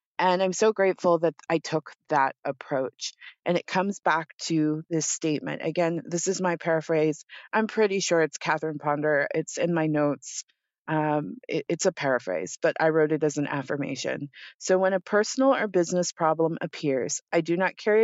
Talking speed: 180 wpm